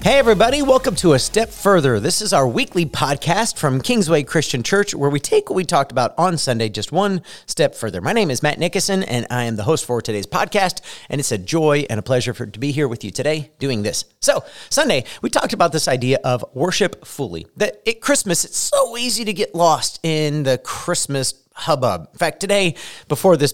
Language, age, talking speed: English, 40-59, 220 wpm